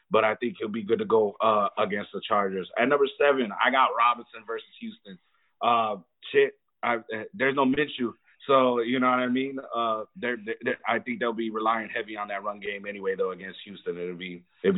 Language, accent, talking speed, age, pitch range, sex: English, American, 215 wpm, 30-49, 110-135 Hz, male